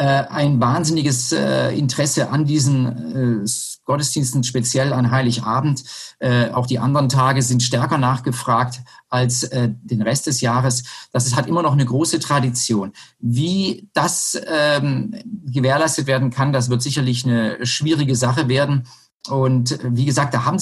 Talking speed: 130 wpm